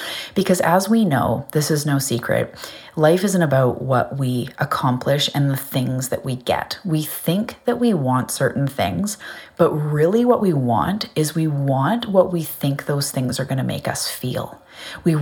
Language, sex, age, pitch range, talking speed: English, female, 30-49, 135-170 Hz, 185 wpm